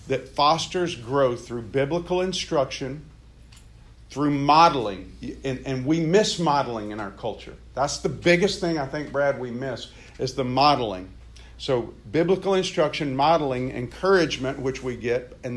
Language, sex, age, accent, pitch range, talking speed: English, male, 50-69, American, 120-155 Hz, 145 wpm